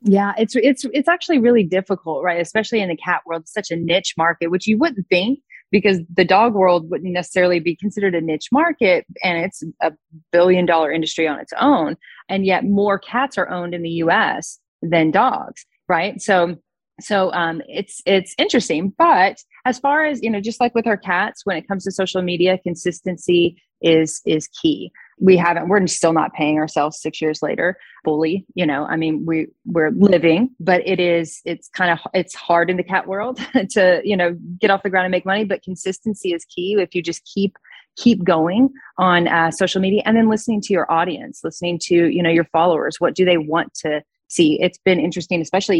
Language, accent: English, American